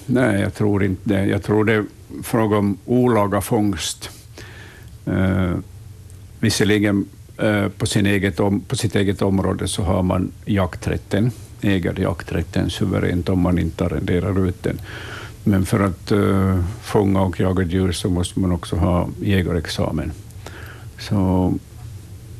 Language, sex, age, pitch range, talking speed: Swedish, male, 60-79, 95-105 Hz, 140 wpm